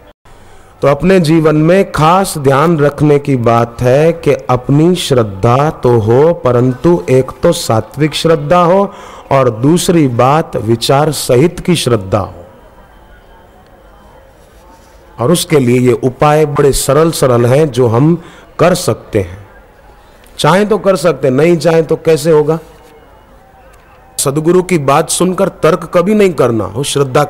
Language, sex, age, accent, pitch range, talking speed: Hindi, male, 40-59, native, 130-185 Hz, 135 wpm